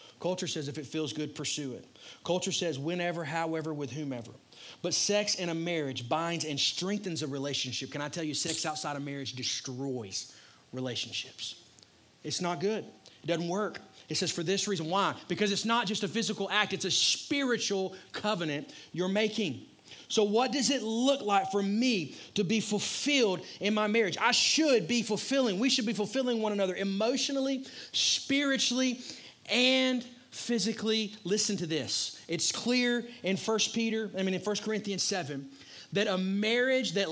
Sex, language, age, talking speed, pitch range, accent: male, English, 30-49, 170 wpm, 150-215 Hz, American